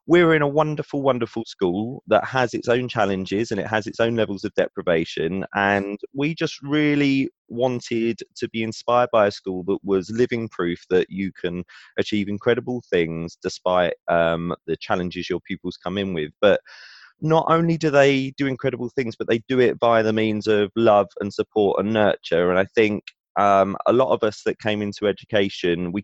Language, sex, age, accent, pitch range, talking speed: English, male, 20-39, British, 95-120 Hz, 190 wpm